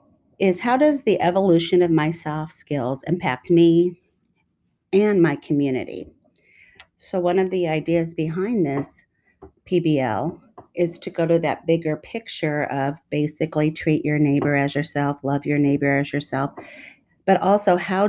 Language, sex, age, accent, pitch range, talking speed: English, female, 40-59, American, 150-190 Hz, 145 wpm